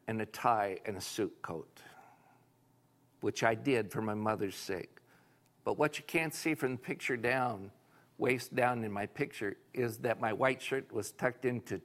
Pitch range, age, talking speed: 110-135 Hz, 60-79, 180 wpm